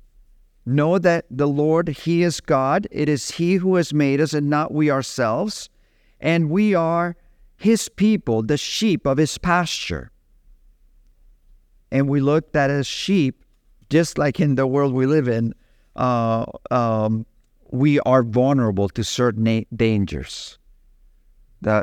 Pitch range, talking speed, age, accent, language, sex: 120-155 Hz, 140 wpm, 50-69, American, English, male